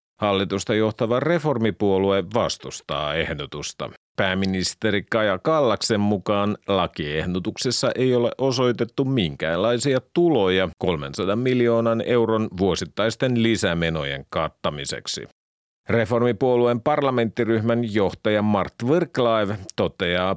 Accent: native